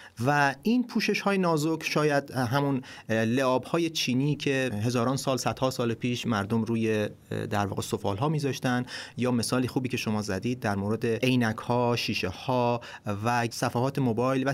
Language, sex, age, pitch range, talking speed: Persian, male, 30-49, 115-155 Hz, 155 wpm